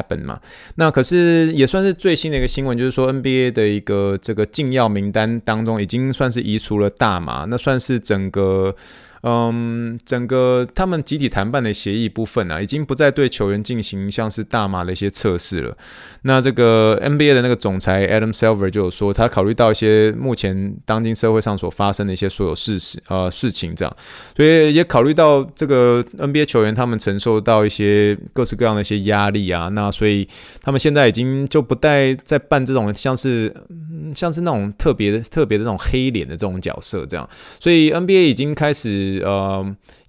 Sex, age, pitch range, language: male, 20-39, 100-130 Hz, Chinese